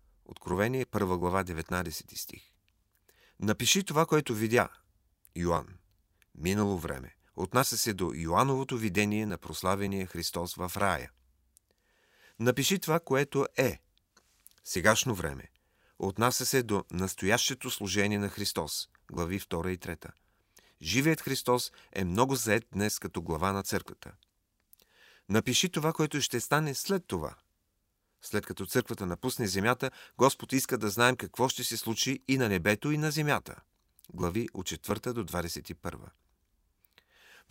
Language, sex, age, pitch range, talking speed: Bulgarian, male, 40-59, 90-125 Hz, 130 wpm